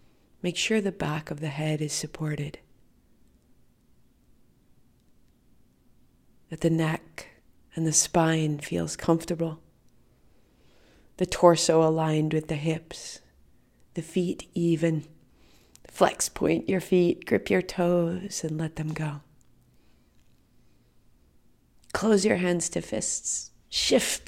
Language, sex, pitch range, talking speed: English, female, 155-185 Hz, 105 wpm